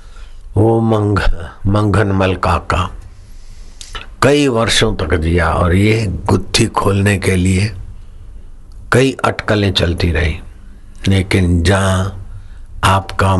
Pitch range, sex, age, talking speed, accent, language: 90-100 Hz, male, 60-79, 100 wpm, native, Hindi